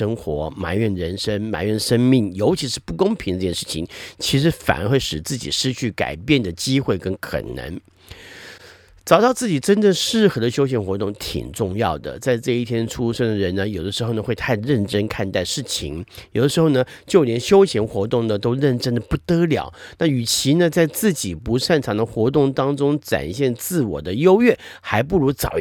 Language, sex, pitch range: Chinese, male, 100-145 Hz